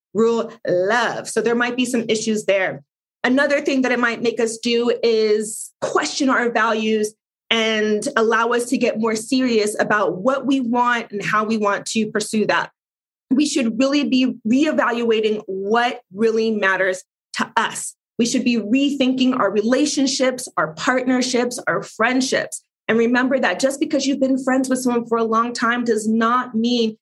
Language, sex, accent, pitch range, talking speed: English, female, American, 220-265 Hz, 170 wpm